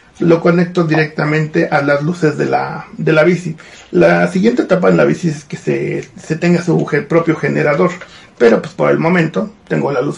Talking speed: 200 wpm